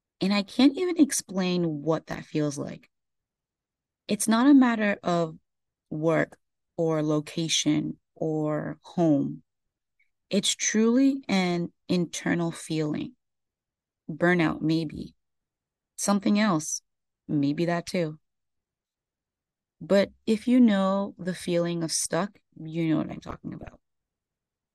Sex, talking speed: female, 110 wpm